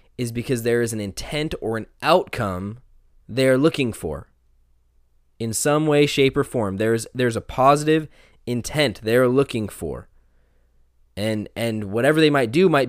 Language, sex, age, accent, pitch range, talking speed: English, male, 20-39, American, 110-160 Hz, 160 wpm